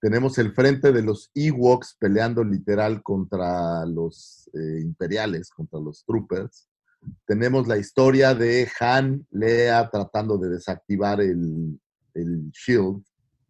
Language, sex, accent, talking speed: Spanish, male, Mexican, 120 wpm